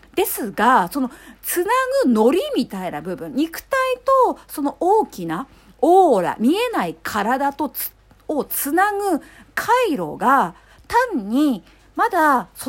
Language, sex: Japanese, female